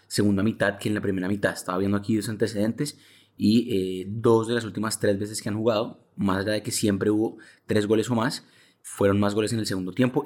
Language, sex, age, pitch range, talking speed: Spanish, male, 20-39, 95-110 Hz, 235 wpm